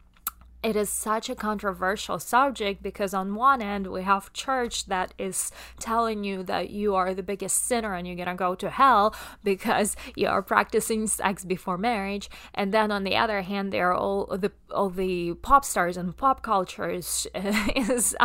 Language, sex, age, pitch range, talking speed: English, female, 20-39, 180-210 Hz, 180 wpm